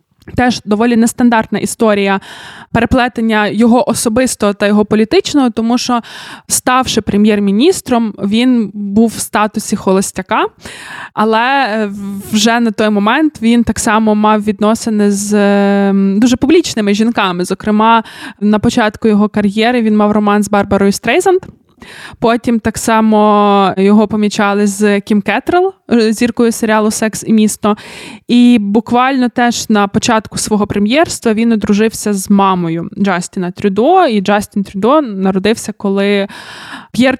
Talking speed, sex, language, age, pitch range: 125 wpm, female, Ukrainian, 20-39, 205-235 Hz